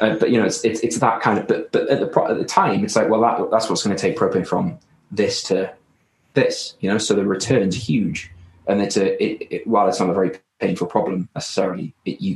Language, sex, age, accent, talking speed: English, male, 20-39, British, 255 wpm